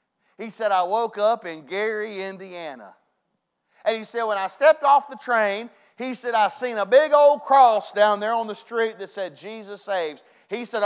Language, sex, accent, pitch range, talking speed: English, male, American, 180-220 Hz, 200 wpm